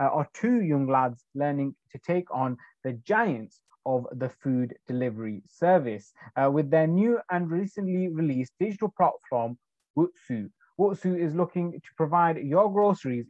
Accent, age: British, 30-49